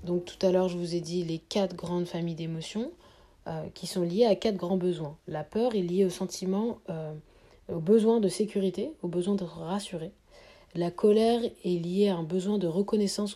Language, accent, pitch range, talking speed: French, French, 170-210 Hz, 200 wpm